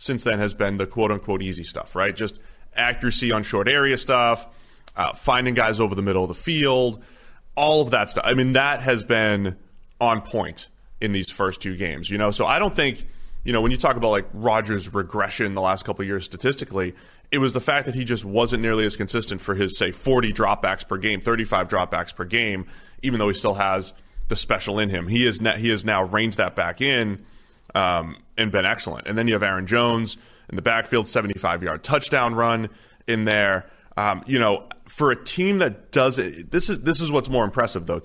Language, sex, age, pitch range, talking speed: English, male, 30-49, 100-125 Hz, 215 wpm